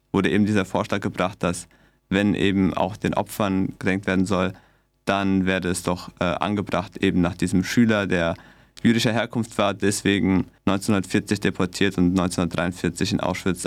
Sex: male